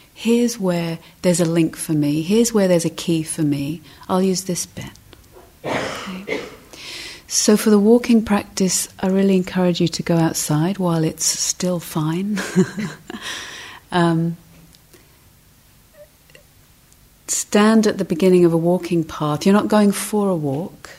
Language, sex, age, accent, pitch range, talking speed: English, female, 40-59, British, 165-195 Hz, 140 wpm